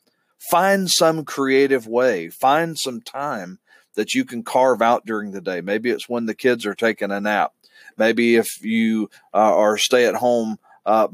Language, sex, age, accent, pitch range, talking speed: English, male, 40-59, American, 110-135 Hz, 180 wpm